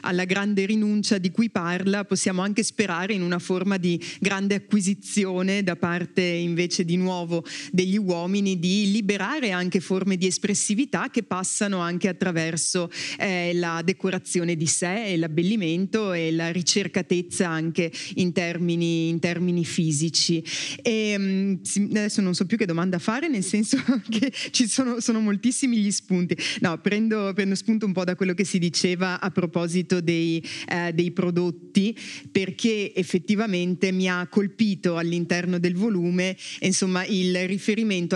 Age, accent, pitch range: 30-49, native, 175-205 Hz